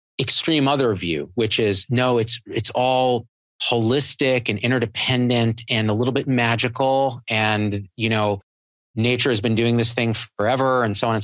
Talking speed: 165 wpm